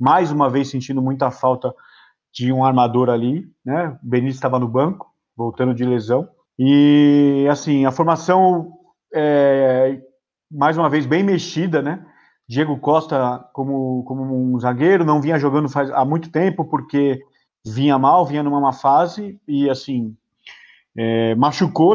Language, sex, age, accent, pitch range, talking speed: Portuguese, male, 30-49, Brazilian, 135-165 Hz, 145 wpm